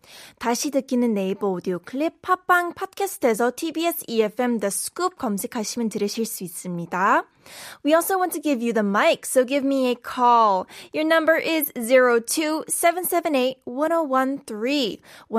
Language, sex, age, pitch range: Korean, female, 20-39, 230-320 Hz